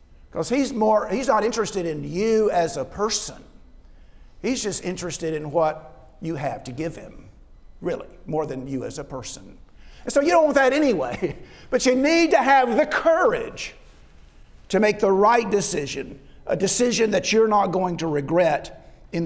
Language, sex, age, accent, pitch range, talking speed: English, male, 50-69, American, 155-230 Hz, 170 wpm